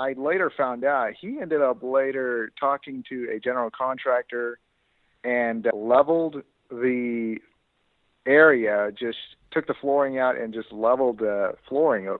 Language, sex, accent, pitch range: English, male, American, 110-130 Hz